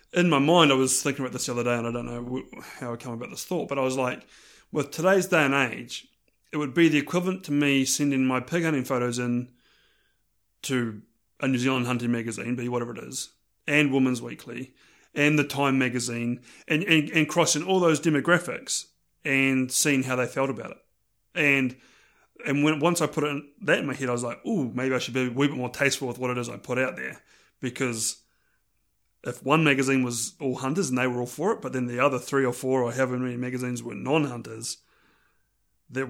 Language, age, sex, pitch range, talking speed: English, 30-49, male, 125-145 Hz, 225 wpm